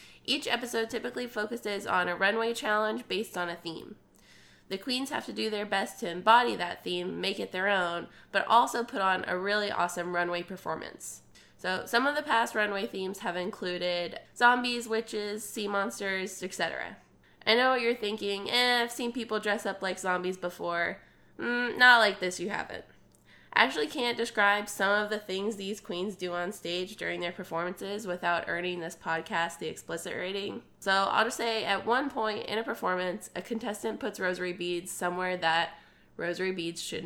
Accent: American